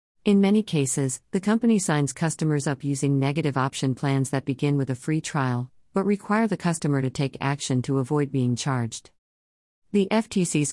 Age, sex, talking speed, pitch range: 50-69, female, 175 wpm, 130-160 Hz